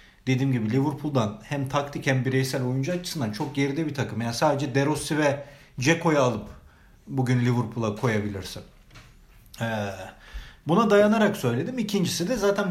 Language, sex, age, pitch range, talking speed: Turkish, male, 40-59, 130-165 Hz, 135 wpm